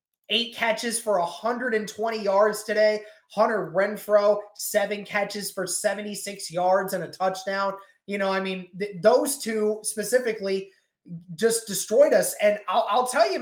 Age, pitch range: 20-39, 205-255 Hz